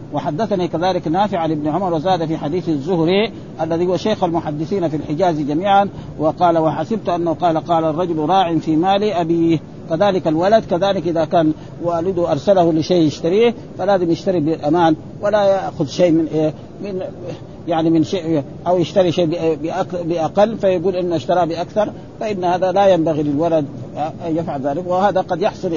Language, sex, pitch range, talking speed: Arabic, male, 155-185 Hz, 150 wpm